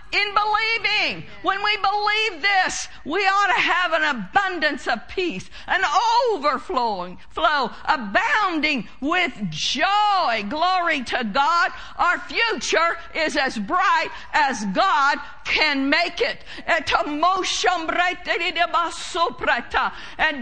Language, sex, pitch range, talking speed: English, female, 295-370 Hz, 100 wpm